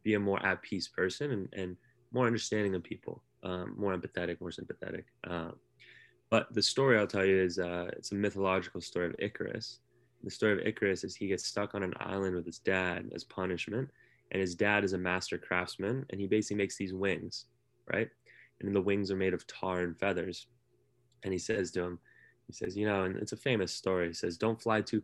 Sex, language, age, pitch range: male, English, 20-39, 90-105 Hz